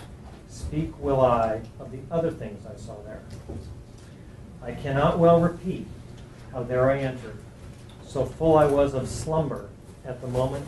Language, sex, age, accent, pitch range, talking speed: English, male, 40-59, American, 115-135 Hz, 150 wpm